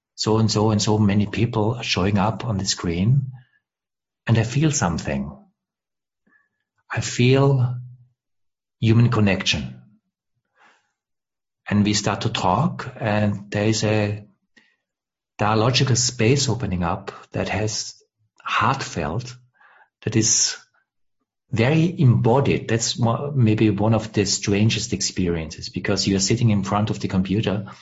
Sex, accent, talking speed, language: male, German, 120 wpm, English